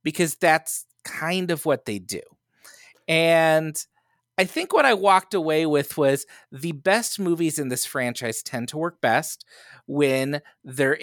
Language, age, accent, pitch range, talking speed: English, 30-49, American, 125-175 Hz, 150 wpm